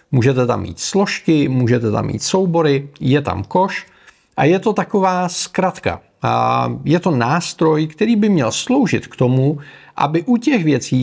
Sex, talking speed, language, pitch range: male, 160 wpm, Czech, 120-180 Hz